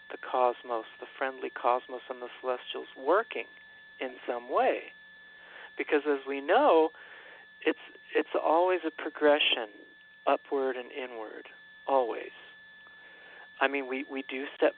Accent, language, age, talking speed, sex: American, English, 40-59, 125 wpm, male